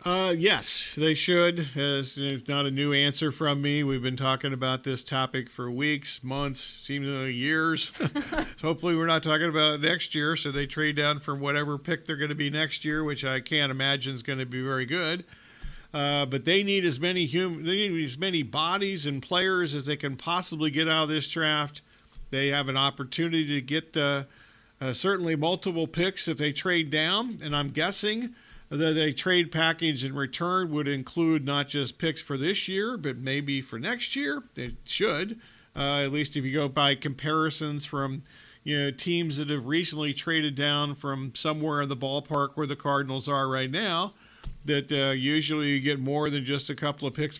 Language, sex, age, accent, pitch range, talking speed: English, male, 50-69, American, 140-160 Hz, 200 wpm